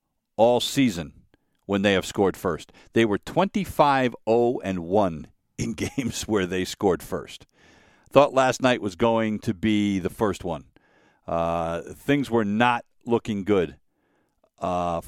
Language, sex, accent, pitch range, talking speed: English, male, American, 95-125 Hz, 145 wpm